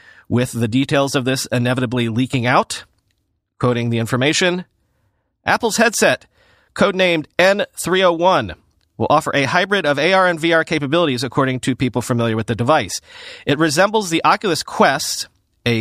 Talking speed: 140 wpm